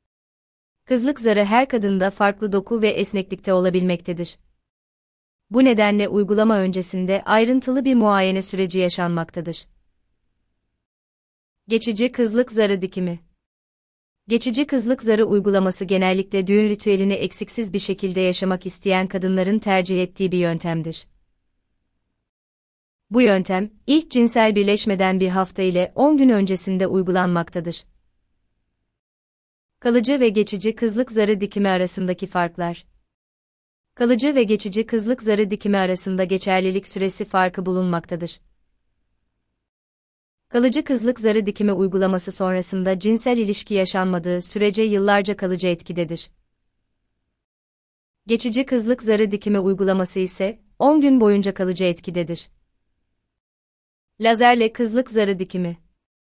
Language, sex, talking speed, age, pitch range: Turkish, female, 105 wpm, 30-49, 170-215 Hz